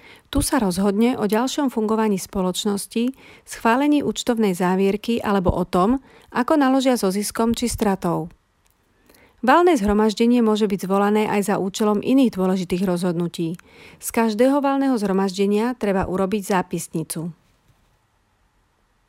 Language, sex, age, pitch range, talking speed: Slovak, female, 40-59, 185-235 Hz, 115 wpm